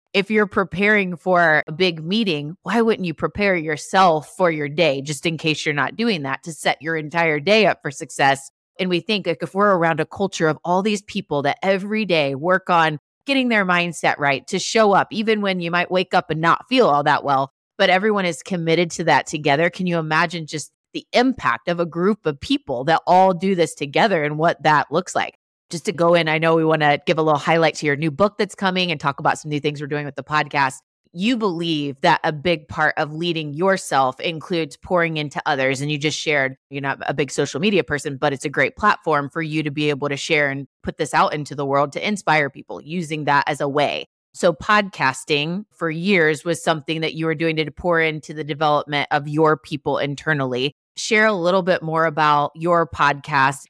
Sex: female